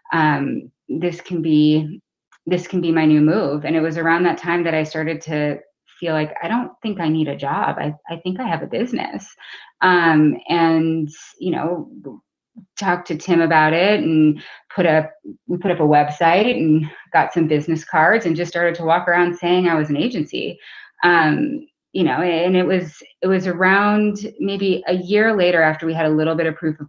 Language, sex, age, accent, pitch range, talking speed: English, female, 20-39, American, 150-175 Hz, 205 wpm